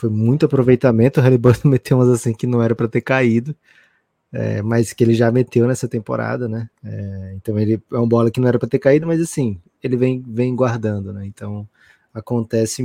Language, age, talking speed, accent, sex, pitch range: Portuguese, 20-39, 205 wpm, Brazilian, male, 110-130 Hz